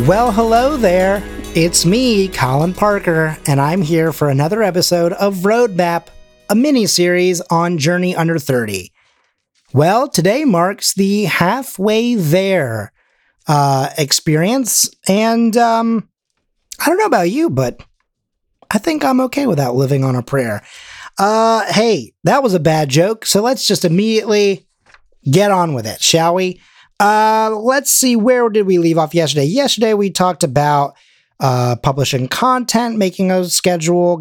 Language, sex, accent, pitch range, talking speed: English, male, American, 140-205 Hz, 145 wpm